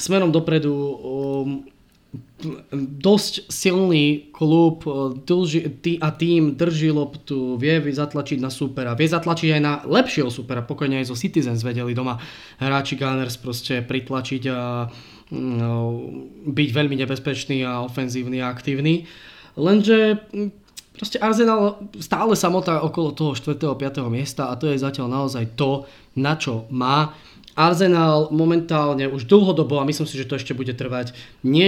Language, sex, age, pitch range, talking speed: Slovak, male, 20-39, 130-165 Hz, 135 wpm